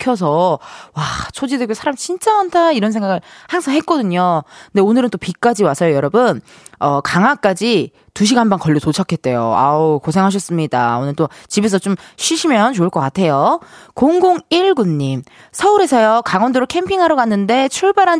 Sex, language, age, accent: female, Korean, 20-39, native